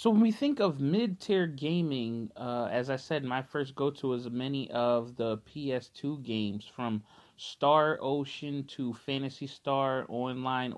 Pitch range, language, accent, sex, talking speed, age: 120-150 Hz, English, American, male, 150 wpm, 30-49